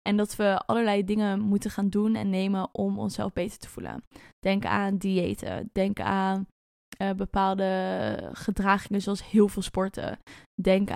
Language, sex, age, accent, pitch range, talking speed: Dutch, female, 10-29, Dutch, 195-220 Hz, 155 wpm